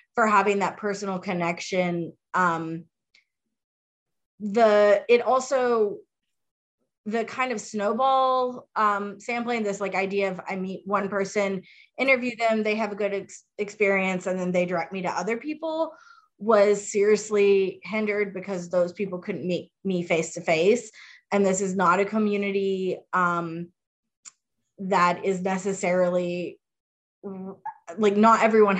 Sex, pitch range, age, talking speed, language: female, 180-210 Hz, 20-39, 130 wpm, English